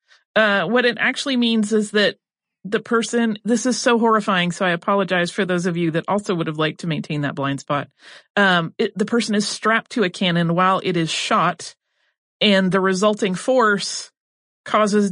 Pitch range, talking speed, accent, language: 170-220 Hz, 190 wpm, American, English